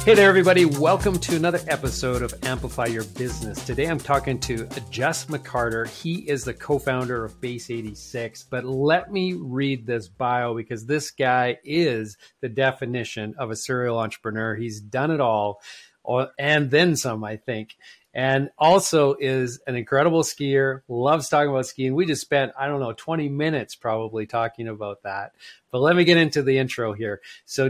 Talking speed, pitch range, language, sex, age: 175 wpm, 120-150 Hz, English, male, 40-59